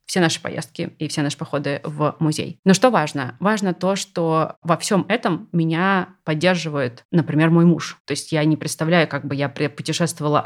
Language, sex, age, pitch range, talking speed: Russian, female, 20-39, 145-170 Hz, 185 wpm